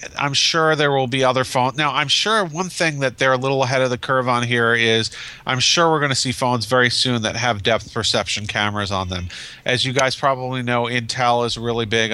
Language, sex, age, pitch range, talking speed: English, male, 40-59, 110-125 Hz, 235 wpm